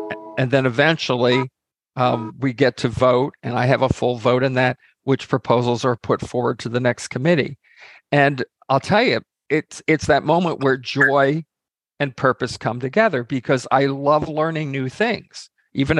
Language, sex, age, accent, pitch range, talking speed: English, male, 50-69, American, 125-150 Hz, 175 wpm